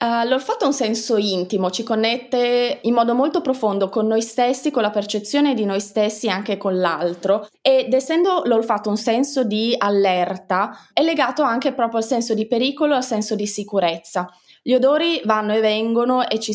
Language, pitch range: Italian, 200-245 Hz